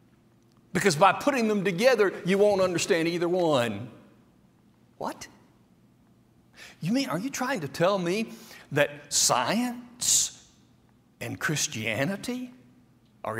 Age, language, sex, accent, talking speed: 60-79, English, male, American, 105 wpm